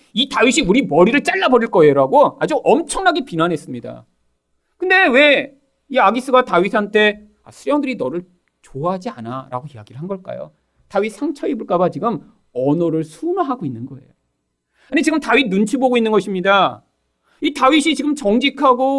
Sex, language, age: male, Korean, 40-59